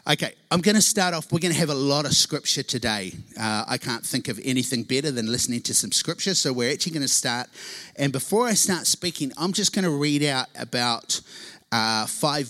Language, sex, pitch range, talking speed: English, male, 115-150 Hz, 225 wpm